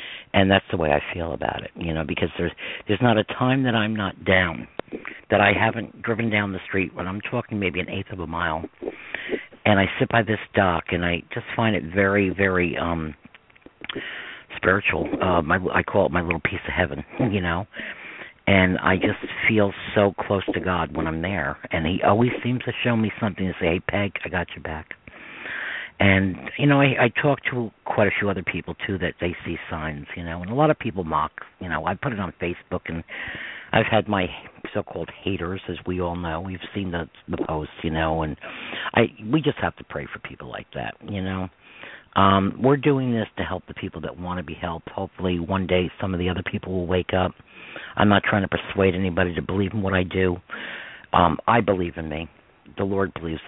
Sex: male